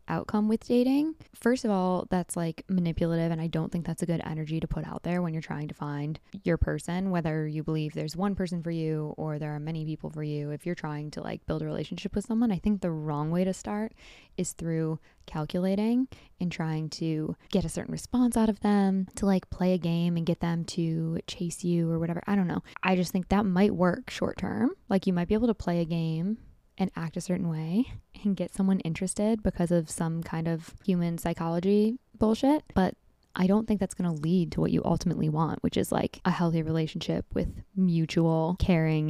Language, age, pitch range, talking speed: English, 10-29, 165-195 Hz, 220 wpm